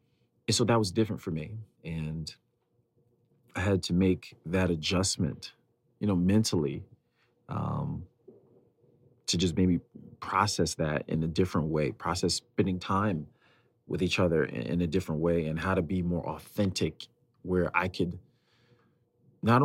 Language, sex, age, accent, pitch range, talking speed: English, male, 40-59, American, 85-115 Hz, 145 wpm